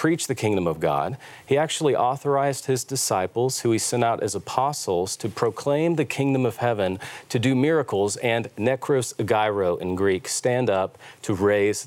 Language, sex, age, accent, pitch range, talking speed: English, male, 40-59, American, 100-130 Hz, 170 wpm